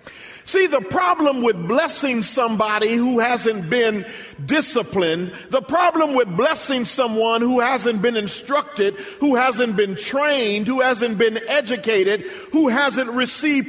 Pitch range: 220-290 Hz